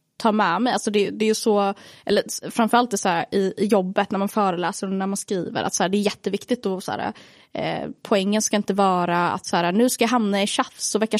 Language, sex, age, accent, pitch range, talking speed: Swedish, female, 20-39, native, 195-230 Hz, 255 wpm